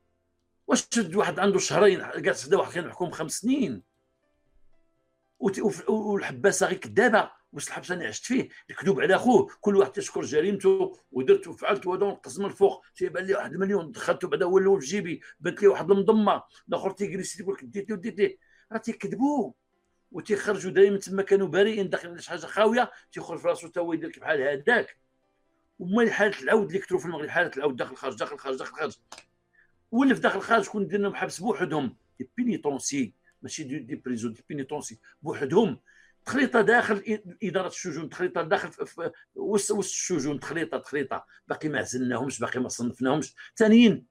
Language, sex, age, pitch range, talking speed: Arabic, male, 60-79, 165-220 Hz, 160 wpm